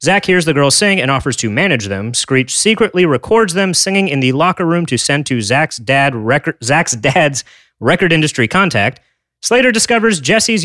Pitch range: 125-180 Hz